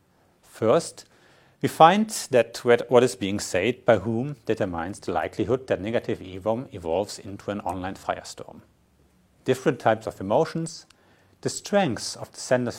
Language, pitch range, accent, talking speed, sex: French, 100-135 Hz, German, 140 wpm, male